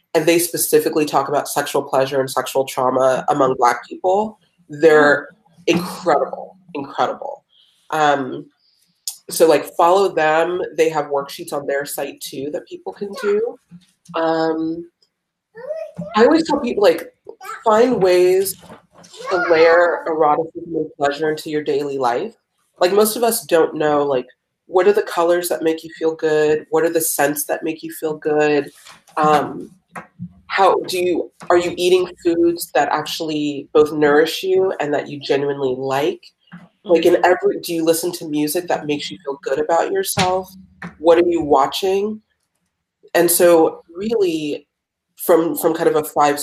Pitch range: 150-185 Hz